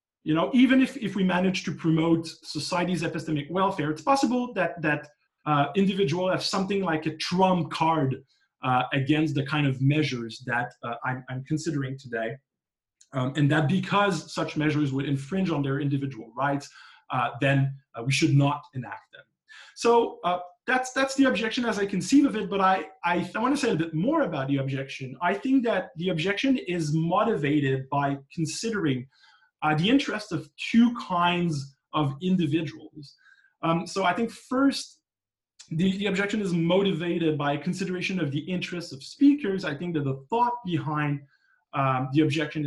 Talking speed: 175 wpm